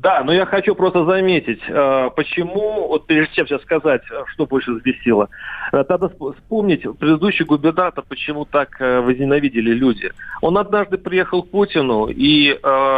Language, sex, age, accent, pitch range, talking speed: Russian, male, 40-59, native, 125-155 Hz, 135 wpm